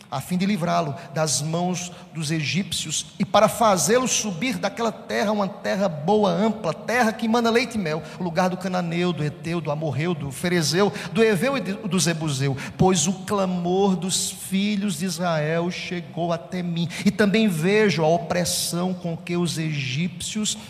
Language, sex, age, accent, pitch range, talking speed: Portuguese, male, 50-69, Brazilian, 145-190 Hz, 170 wpm